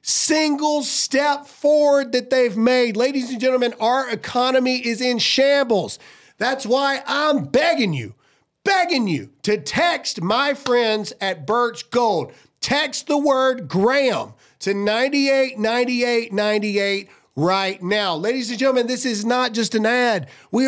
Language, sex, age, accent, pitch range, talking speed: English, male, 40-59, American, 180-255 Hz, 135 wpm